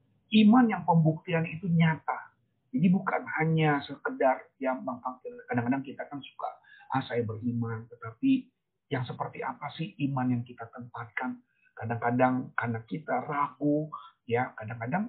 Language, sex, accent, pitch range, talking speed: Indonesian, male, native, 125-190 Hz, 130 wpm